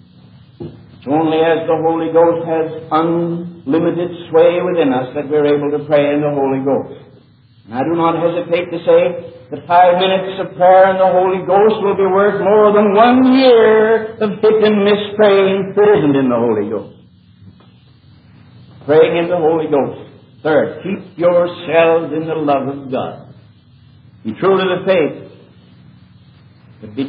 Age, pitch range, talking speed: 60-79, 130-170 Hz, 160 wpm